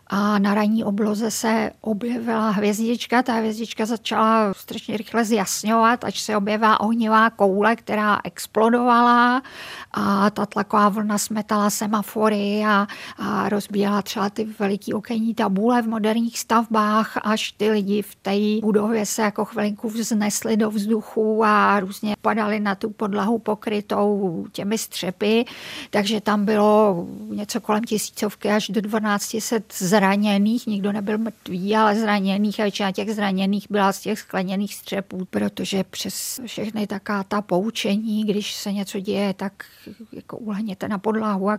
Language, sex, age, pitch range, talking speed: Czech, female, 50-69, 200-220 Hz, 140 wpm